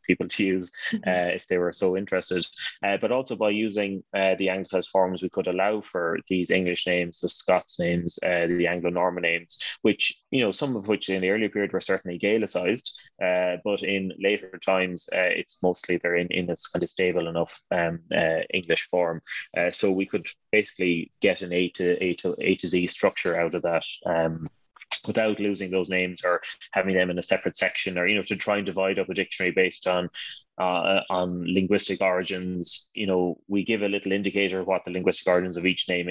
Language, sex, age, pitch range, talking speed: English, male, 20-39, 90-95 Hz, 210 wpm